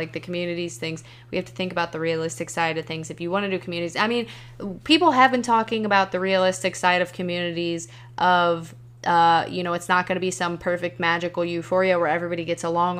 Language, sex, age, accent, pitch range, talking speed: English, female, 20-39, American, 165-195 Hz, 225 wpm